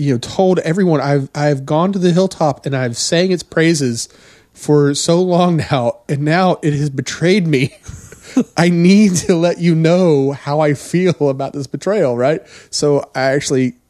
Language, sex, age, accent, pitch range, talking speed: English, male, 30-49, American, 115-150 Hz, 175 wpm